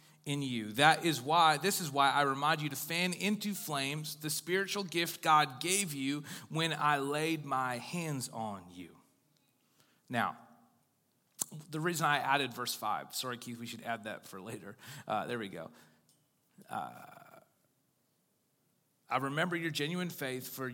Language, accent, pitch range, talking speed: English, American, 120-155 Hz, 155 wpm